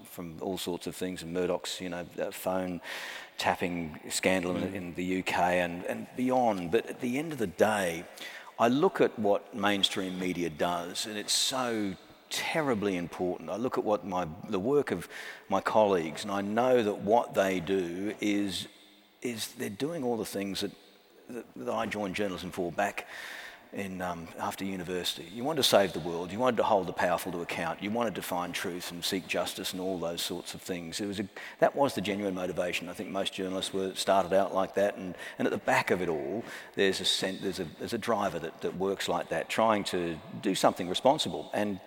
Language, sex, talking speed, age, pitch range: English, male, 195 wpm, 40-59, 90-100 Hz